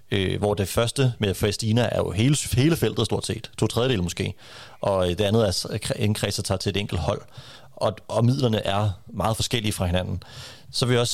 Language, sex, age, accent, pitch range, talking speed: Danish, male, 30-49, native, 100-125 Hz, 200 wpm